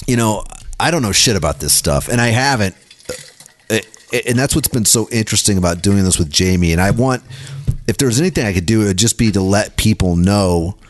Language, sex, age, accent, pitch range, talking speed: English, male, 30-49, American, 95-115 Hz, 220 wpm